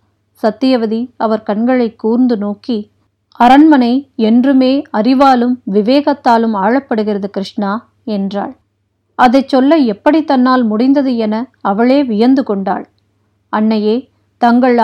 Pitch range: 210-255 Hz